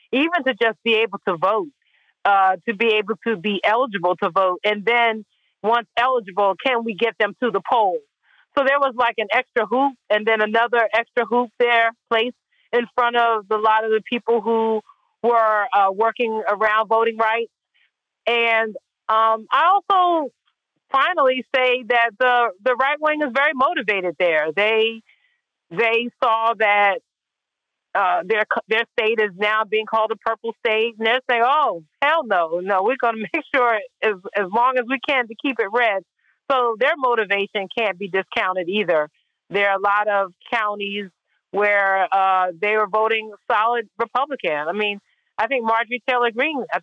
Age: 40-59